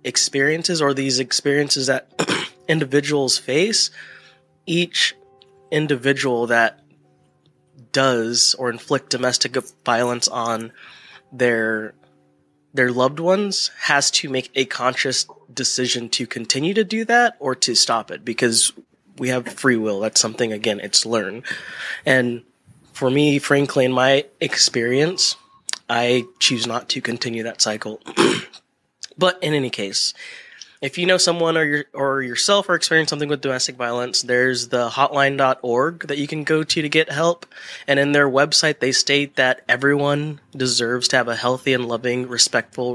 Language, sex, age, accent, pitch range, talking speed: English, male, 20-39, American, 120-145 Hz, 145 wpm